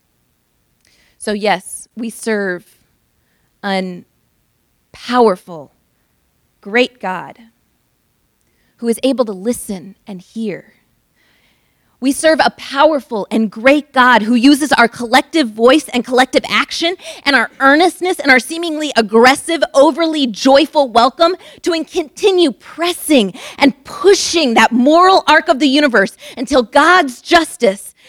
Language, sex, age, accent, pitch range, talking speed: English, female, 30-49, American, 220-290 Hz, 115 wpm